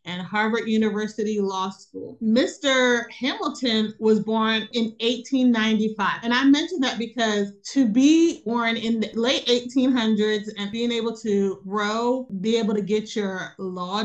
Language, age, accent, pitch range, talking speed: English, 30-49, American, 205-245 Hz, 145 wpm